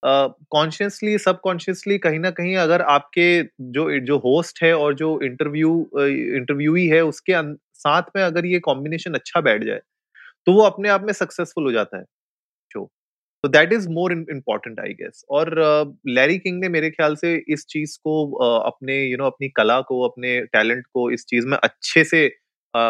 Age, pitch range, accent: 20-39, 125-165 Hz, native